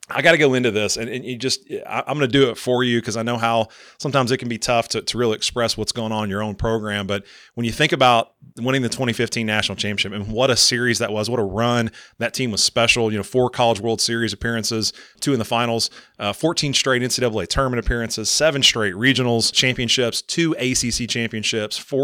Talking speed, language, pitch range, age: 230 wpm, English, 110-125 Hz, 30-49